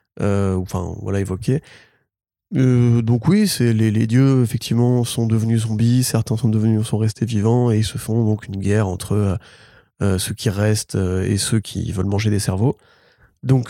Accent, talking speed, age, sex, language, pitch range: French, 180 wpm, 20-39, male, French, 105-125 Hz